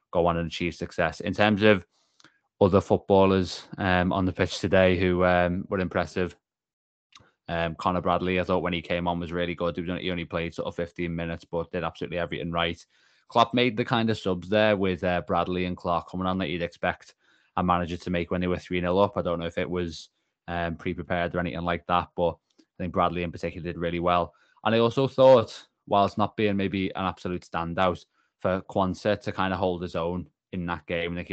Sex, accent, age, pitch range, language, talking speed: male, British, 20-39, 85-95 Hz, English, 220 wpm